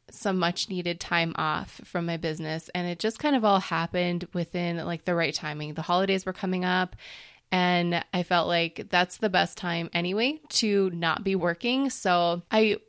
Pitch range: 165-185 Hz